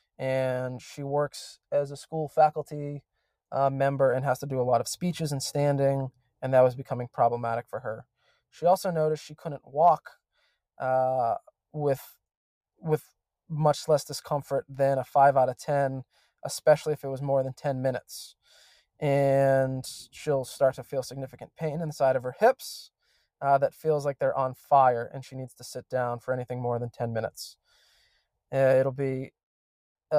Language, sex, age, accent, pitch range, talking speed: English, male, 20-39, American, 130-145 Hz, 170 wpm